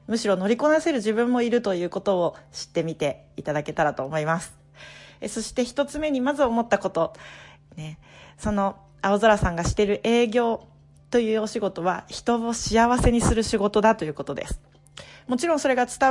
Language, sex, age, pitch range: Japanese, female, 40-59, 160-230 Hz